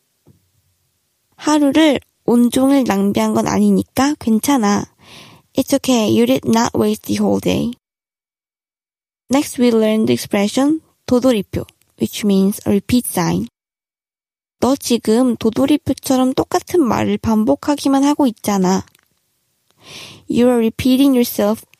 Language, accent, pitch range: Korean, native, 215-275 Hz